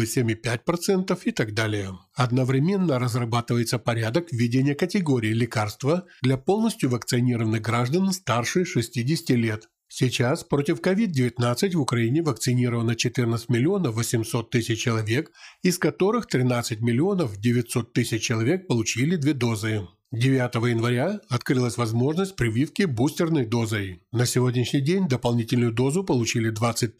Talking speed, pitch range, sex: 105 wpm, 115-150 Hz, male